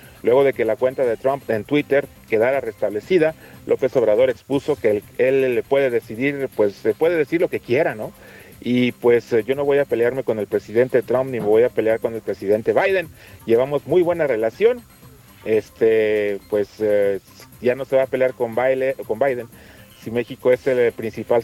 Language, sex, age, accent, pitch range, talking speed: Spanish, male, 40-59, Mexican, 120-205 Hz, 190 wpm